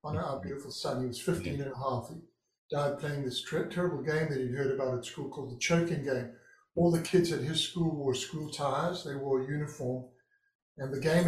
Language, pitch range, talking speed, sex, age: English, 140-180 Hz, 225 wpm, male, 50-69